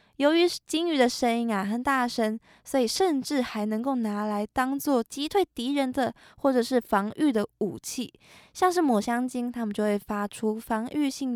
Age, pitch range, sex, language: 20-39, 220-295 Hz, female, Chinese